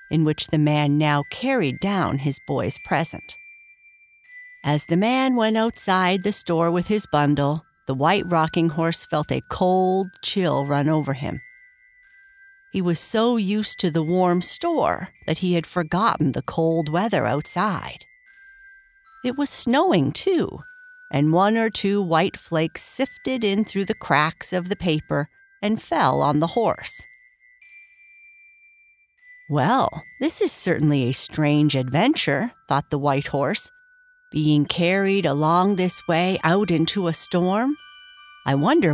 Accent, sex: American, female